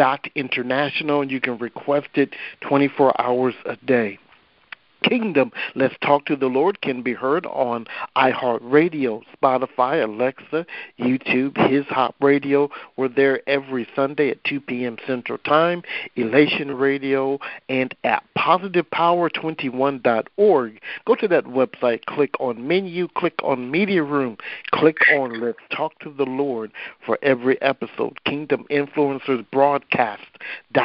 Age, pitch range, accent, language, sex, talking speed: 50-69, 125-150 Hz, American, English, male, 130 wpm